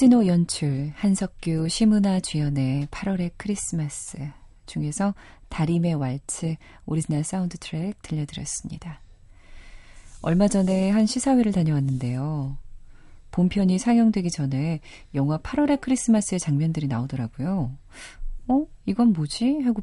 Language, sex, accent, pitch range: Korean, female, native, 135-190 Hz